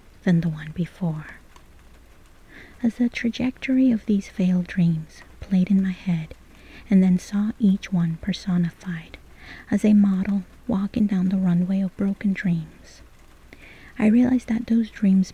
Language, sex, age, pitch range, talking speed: English, female, 30-49, 175-210 Hz, 140 wpm